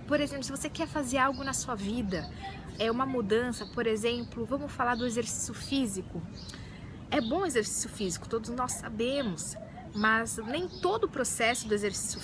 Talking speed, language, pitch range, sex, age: 170 wpm, Portuguese, 230-280 Hz, female, 20-39